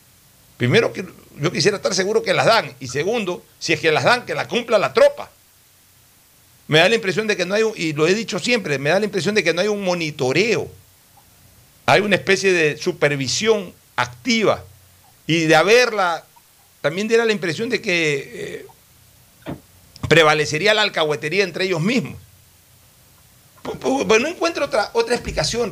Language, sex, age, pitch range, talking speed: Spanish, male, 60-79, 150-230 Hz, 175 wpm